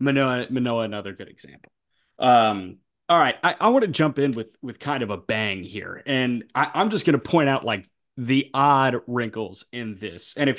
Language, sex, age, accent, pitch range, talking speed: English, male, 30-49, American, 115-145 Hz, 205 wpm